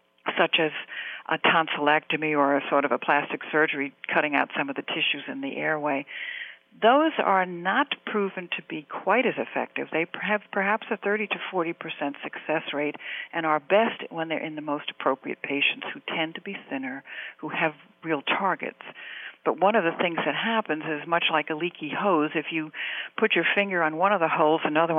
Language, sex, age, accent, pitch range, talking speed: English, female, 60-79, American, 150-200 Hz, 195 wpm